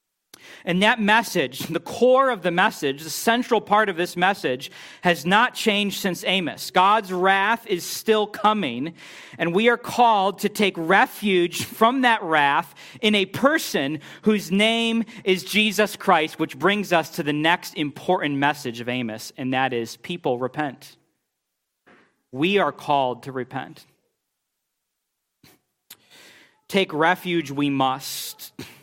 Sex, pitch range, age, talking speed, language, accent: male, 145-195 Hz, 40-59, 135 wpm, English, American